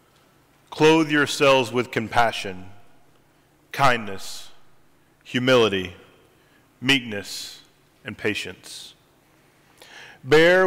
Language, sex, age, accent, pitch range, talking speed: English, male, 40-59, American, 130-160 Hz, 55 wpm